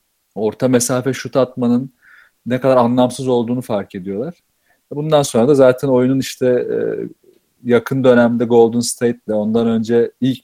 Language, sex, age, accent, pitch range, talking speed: Turkish, male, 40-59, native, 115-135 Hz, 140 wpm